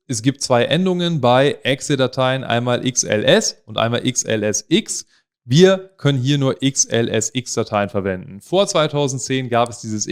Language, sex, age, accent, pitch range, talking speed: German, male, 30-49, German, 110-150 Hz, 130 wpm